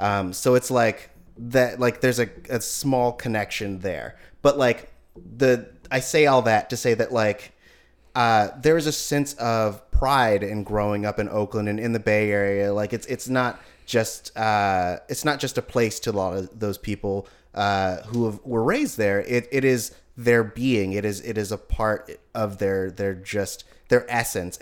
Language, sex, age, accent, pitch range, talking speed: English, male, 30-49, American, 100-120 Hz, 195 wpm